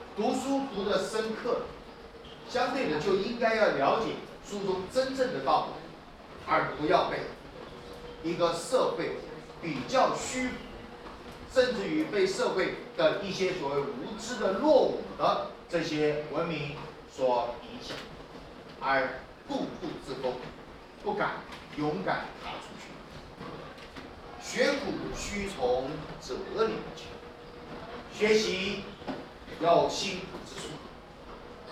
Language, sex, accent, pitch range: Chinese, male, native, 165-260 Hz